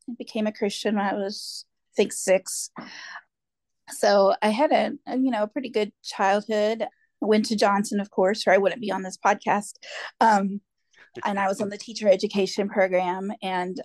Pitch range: 185-220 Hz